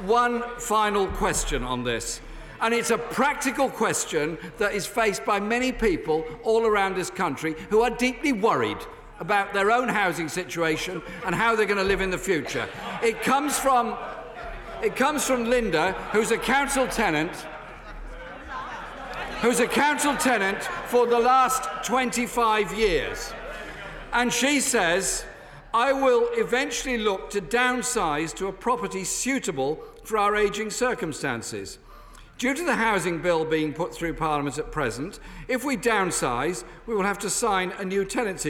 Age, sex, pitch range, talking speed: 50-69, male, 185-250 Hz, 145 wpm